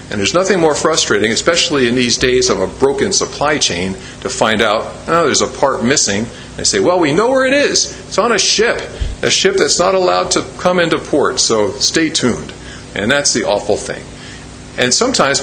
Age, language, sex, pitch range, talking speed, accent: 50-69, English, male, 125-180 Hz, 205 wpm, American